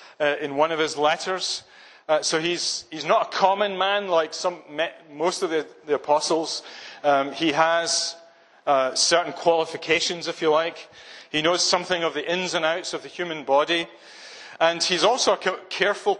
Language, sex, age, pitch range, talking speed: English, male, 40-59, 150-180 Hz, 175 wpm